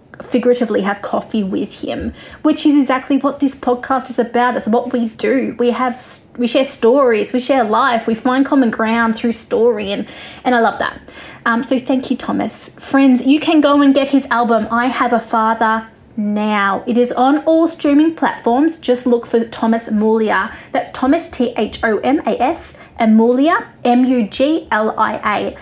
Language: English